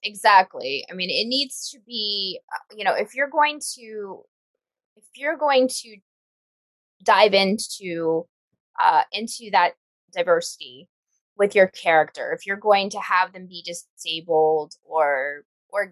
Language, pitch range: English, 200-280 Hz